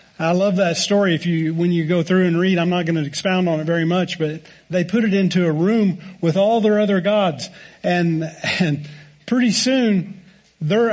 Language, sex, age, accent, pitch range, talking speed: English, male, 50-69, American, 175-215 Hz, 210 wpm